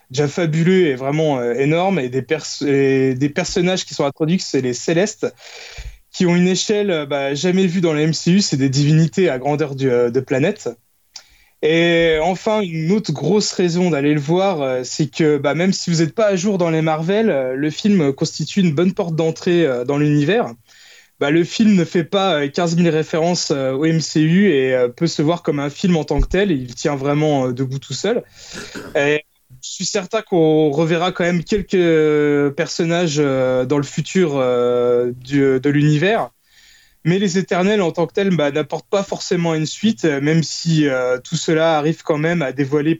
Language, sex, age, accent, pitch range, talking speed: French, male, 20-39, French, 145-180 Hz, 185 wpm